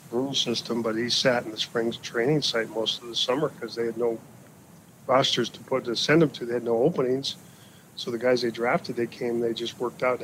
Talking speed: 235 wpm